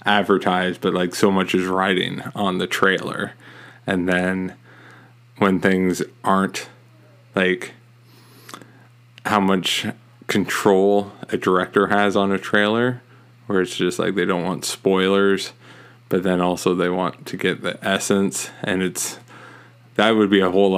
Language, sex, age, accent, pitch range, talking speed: English, male, 20-39, American, 95-120 Hz, 140 wpm